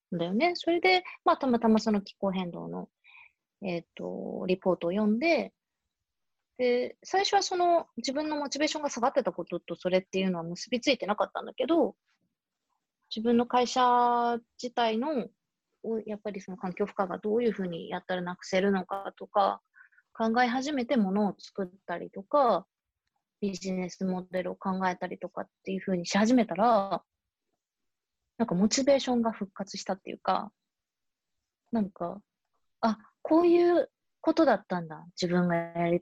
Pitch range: 180-245 Hz